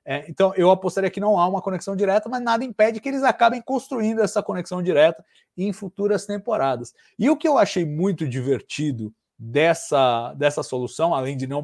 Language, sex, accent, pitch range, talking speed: Portuguese, male, Brazilian, 140-190 Hz, 180 wpm